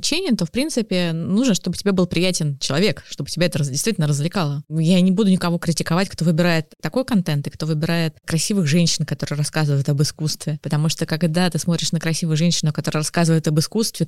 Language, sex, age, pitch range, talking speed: Russian, female, 20-39, 155-195 Hz, 190 wpm